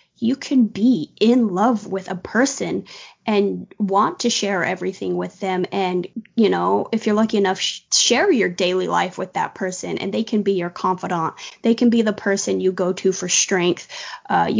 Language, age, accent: English, 20-39, American